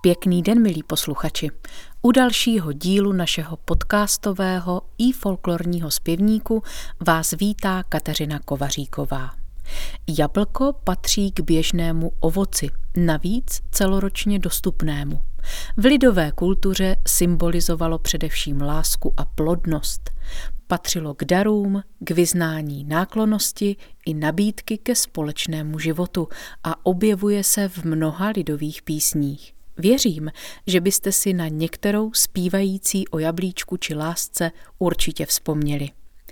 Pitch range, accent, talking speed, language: 155-200 Hz, native, 105 wpm, Czech